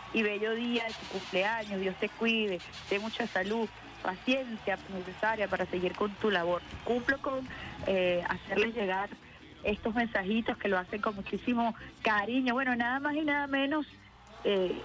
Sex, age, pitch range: female, 30-49, 190-230 Hz